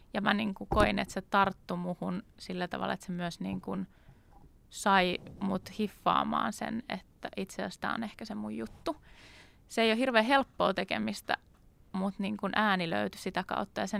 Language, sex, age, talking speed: Finnish, female, 20-39, 185 wpm